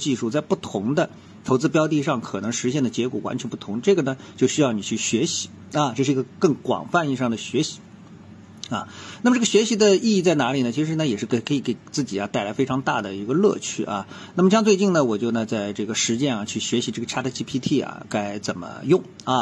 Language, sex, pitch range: Chinese, male, 120-185 Hz